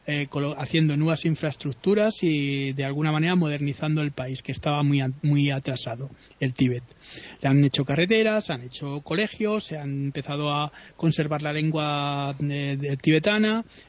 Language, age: Spanish, 30-49